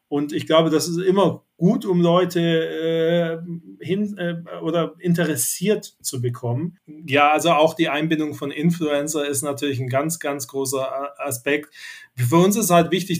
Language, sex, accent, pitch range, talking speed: German, male, German, 145-175 Hz, 160 wpm